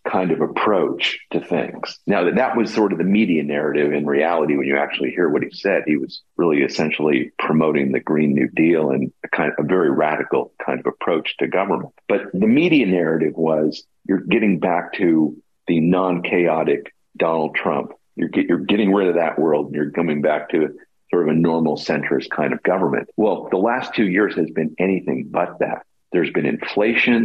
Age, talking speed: 50-69, 200 wpm